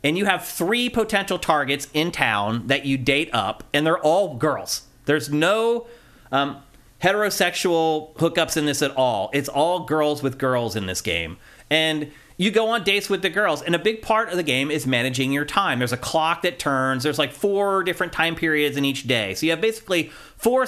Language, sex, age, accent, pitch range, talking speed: English, male, 30-49, American, 135-180 Hz, 205 wpm